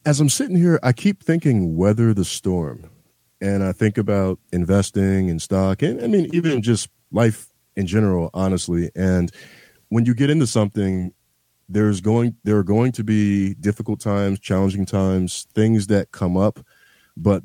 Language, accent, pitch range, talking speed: English, American, 90-110 Hz, 165 wpm